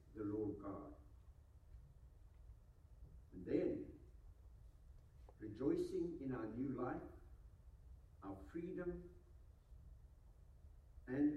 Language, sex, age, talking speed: English, male, 60-79, 70 wpm